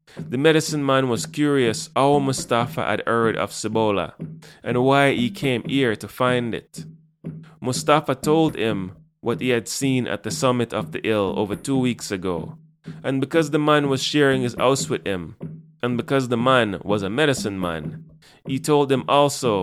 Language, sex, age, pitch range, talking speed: English, male, 20-39, 115-155 Hz, 175 wpm